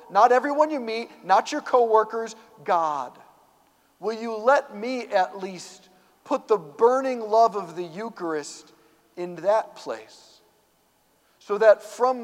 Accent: American